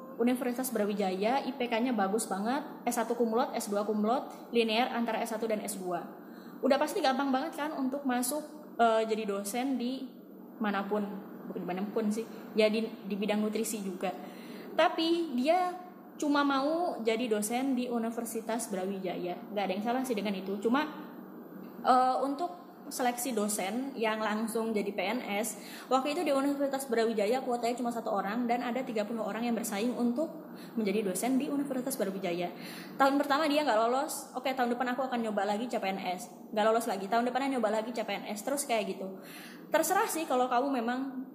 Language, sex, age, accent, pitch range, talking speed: Indonesian, female, 20-39, native, 215-270 Hz, 165 wpm